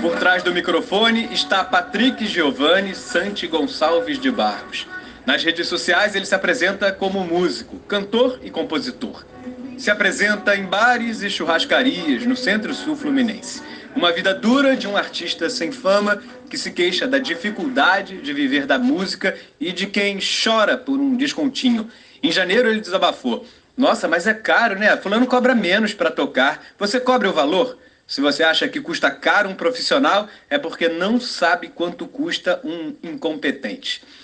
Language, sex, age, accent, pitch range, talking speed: Portuguese, male, 40-59, Brazilian, 190-270 Hz, 155 wpm